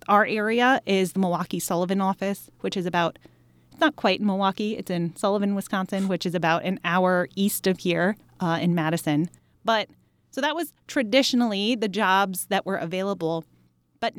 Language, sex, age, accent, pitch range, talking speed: English, female, 20-39, American, 170-210 Hz, 170 wpm